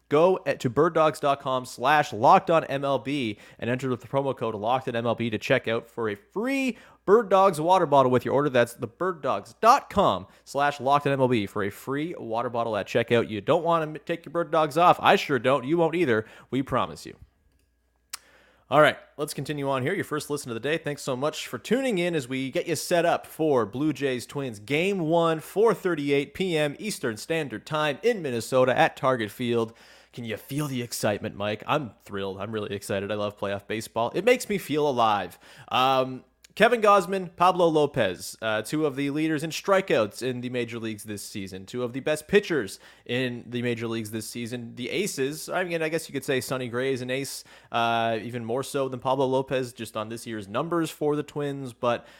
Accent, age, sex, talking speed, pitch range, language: American, 30-49, male, 205 wpm, 115-155 Hz, English